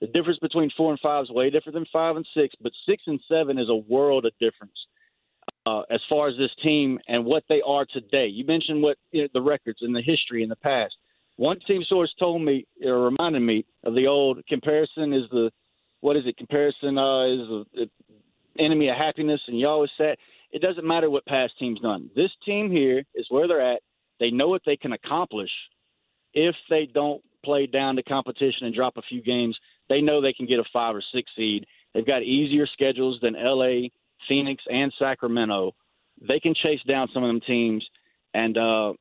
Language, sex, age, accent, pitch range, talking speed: English, male, 40-59, American, 125-150 Hz, 210 wpm